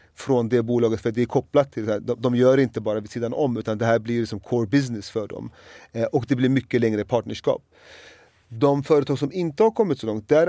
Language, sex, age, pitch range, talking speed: Swedish, male, 30-49, 110-140 Hz, 250 wpm